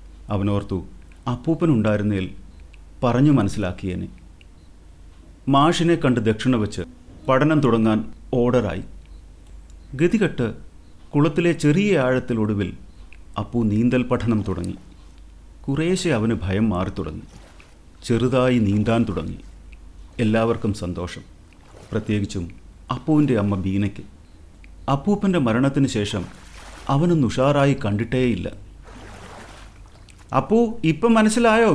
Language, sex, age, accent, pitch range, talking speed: Malayalam, male, 30-49, native, 85-130 Hz, 80 wpm